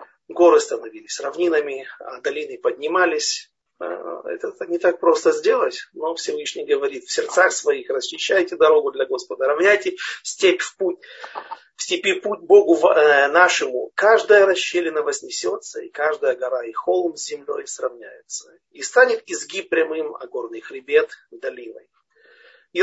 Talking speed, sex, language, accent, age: 130 wpm, male, Russian, native, 40-59